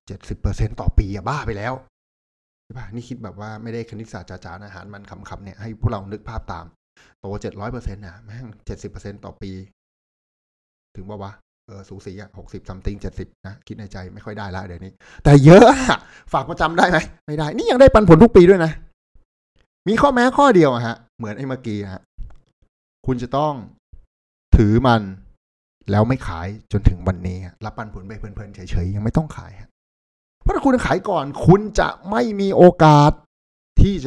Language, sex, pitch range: Thai, male, 95-130 Hz